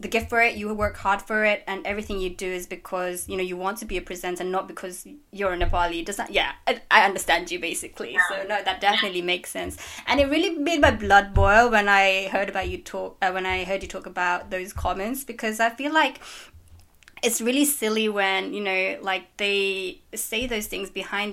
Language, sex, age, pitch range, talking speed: English, female, 20-39, 185-220 Hz, 230 wpm